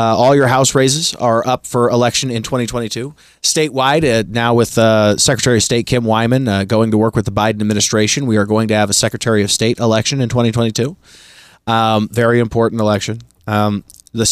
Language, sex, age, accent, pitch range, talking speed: English, male, 30-49, American, 105-125 Hz, 195 wpm